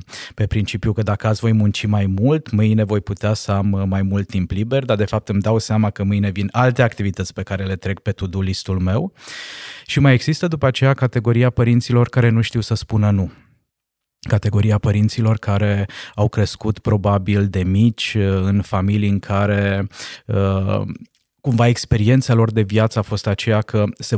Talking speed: 180 wpm